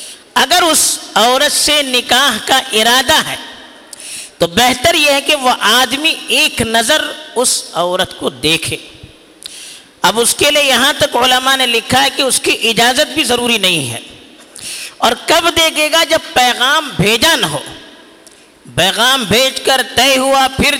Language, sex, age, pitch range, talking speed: Urdu, female, 50-69, 225-300 Hz, 155 wpm